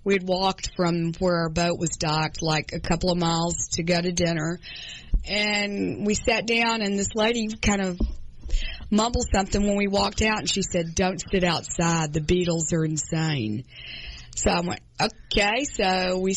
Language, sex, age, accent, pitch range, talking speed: English, female, 40-59, American, 170-205 Hz, 180 wpm